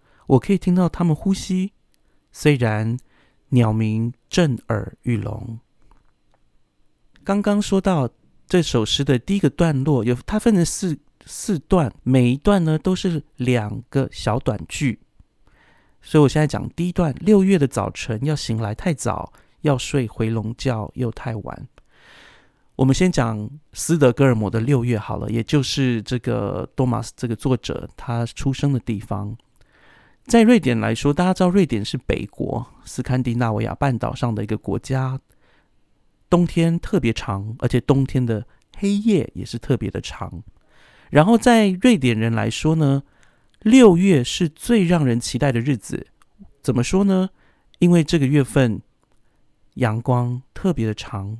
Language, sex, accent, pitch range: Chinese, male, native, 115-160 Hz